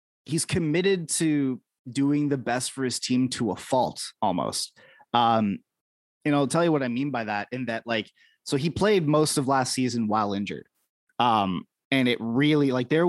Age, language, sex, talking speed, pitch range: 20-39, English, male, 190 wpm, 115-135 Hz